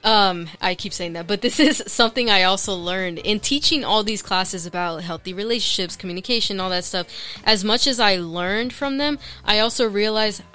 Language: English